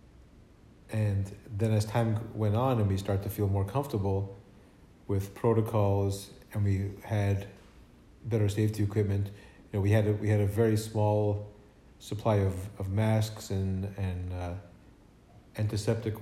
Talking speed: 145 wpm